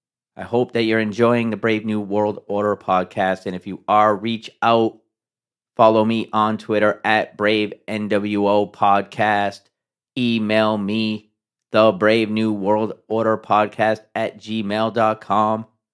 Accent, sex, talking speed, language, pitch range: American, male, 130 wpm, English, 100-115 Hz